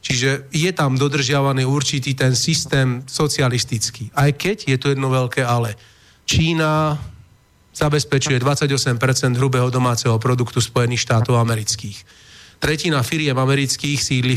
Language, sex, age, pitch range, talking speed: Slovak, male, 30-49, 125-145 Hz, 115 wpm